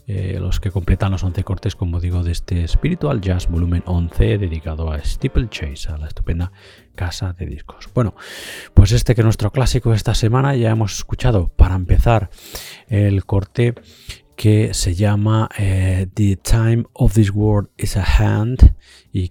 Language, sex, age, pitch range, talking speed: Spanish, male, 30-49, 90-105 Hz, 170 wpm